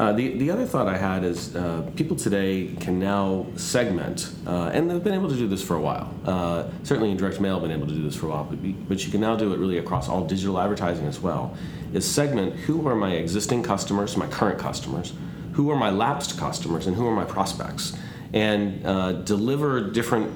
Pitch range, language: 90-105 Hz, English